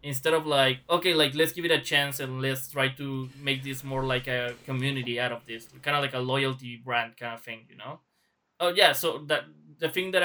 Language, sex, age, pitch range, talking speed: English, male, 20-39, 130-150 Hz, 240 wpm